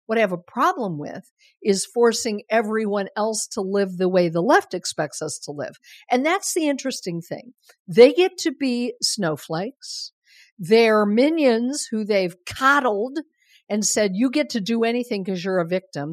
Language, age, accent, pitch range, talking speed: English, 50-69, American, 195-275 Hz, 170 wpm